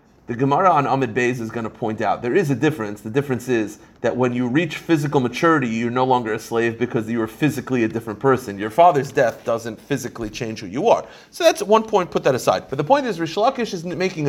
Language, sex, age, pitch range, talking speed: English, male, 30-49, 130-195 Hz, 245 wpm